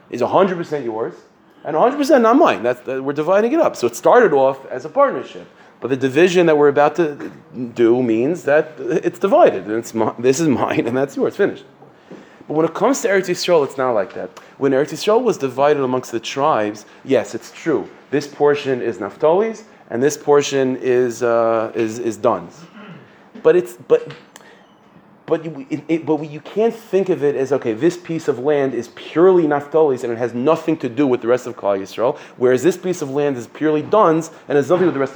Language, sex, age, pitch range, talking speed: English, male, 30-49, 125-165 Hz, 215 wpm